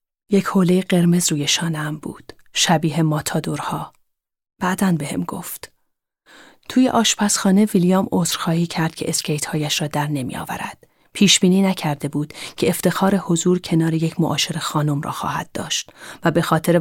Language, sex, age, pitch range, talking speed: Persian, female, 30-49, 160-195 Hz, 145 wpm